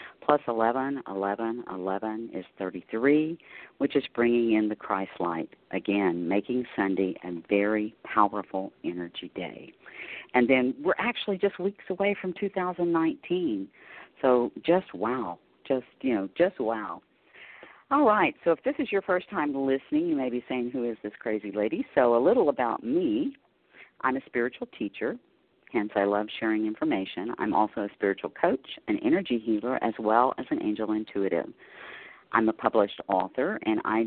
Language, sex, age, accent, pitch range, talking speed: English, female, 50-69, American, 105-160 Hz, 160 wpm